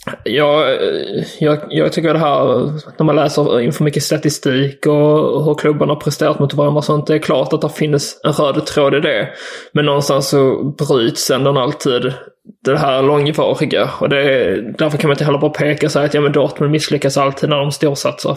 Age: 20-39